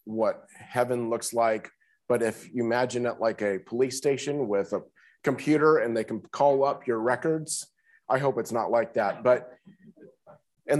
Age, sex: 40-59, male